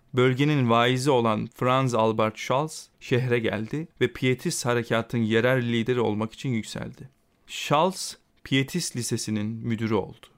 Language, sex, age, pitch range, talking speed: Turkish, male, 40-59, 115-145 Hz, 120 wpm